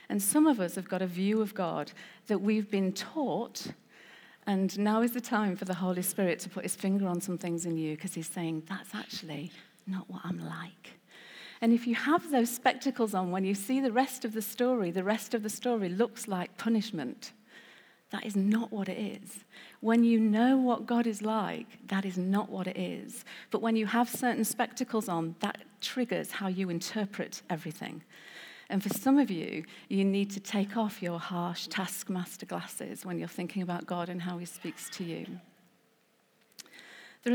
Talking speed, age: 195 wpm, 50-69